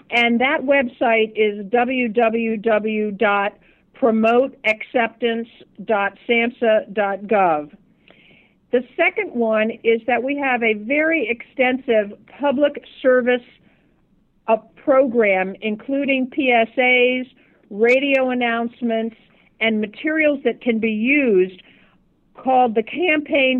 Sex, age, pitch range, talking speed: female, 50-69, 220-260 Hz, 80 wpm